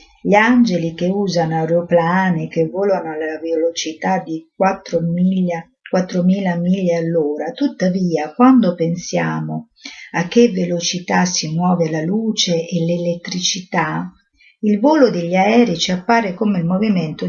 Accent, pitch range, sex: native, 165-195 Hz, female